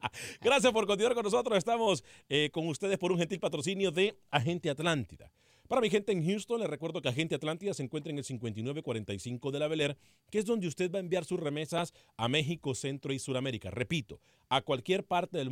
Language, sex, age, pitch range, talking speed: Spanish, male, 40-59, 125-180 Hz, 205 wpm